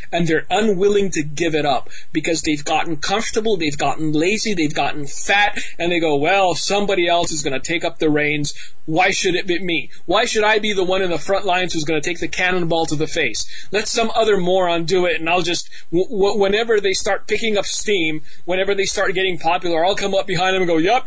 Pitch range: 170-210 Hz